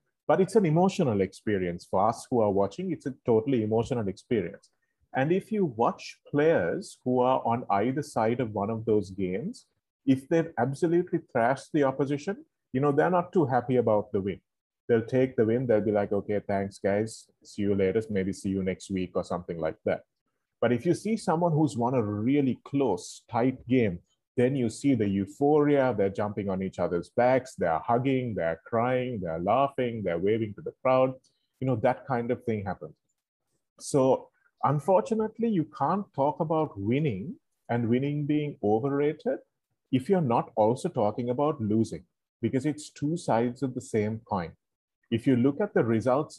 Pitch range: 105-145 Hz